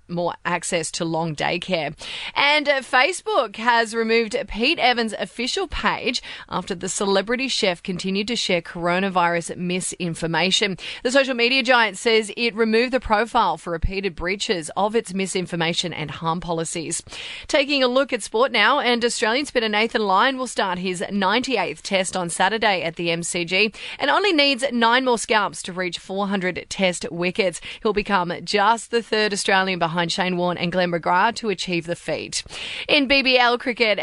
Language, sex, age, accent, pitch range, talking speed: English, female, 30-49, Australian, 180-240 Hz, 160 wpm